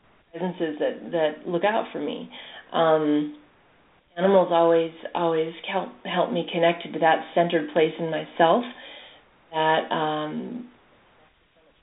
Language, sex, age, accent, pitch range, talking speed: English, female, 40-59, American, 160-200 Hz, 115 wpm